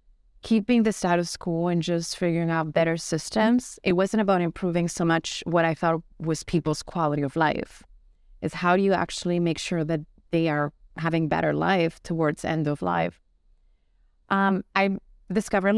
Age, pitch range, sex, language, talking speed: 30-49, 160-185 Hz, female, English, 165 wpm